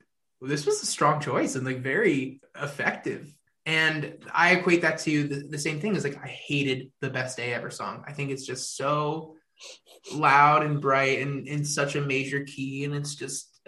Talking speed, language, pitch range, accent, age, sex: 195 wpm, English, 125-145 Hz, American, 20-39, male